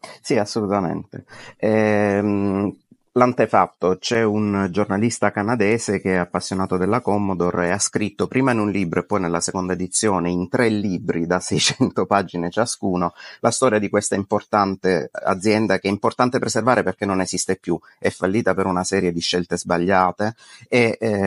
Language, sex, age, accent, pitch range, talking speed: Italian, male, 30-49, native, 95-115 Hz, 155 wpm